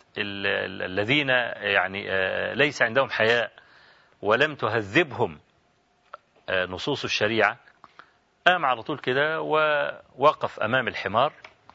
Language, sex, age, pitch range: Arabic, male, 40-59, 130-180 Hz